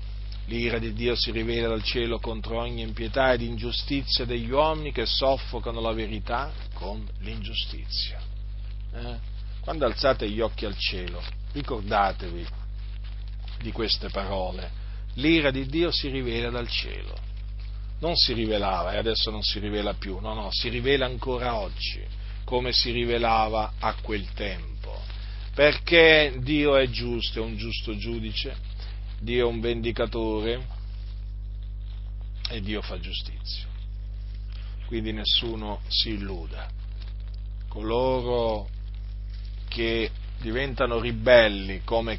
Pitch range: 100-120 Hz